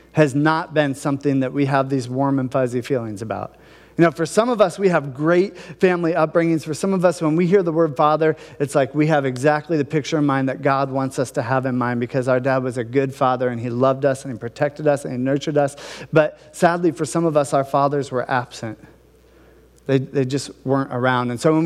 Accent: American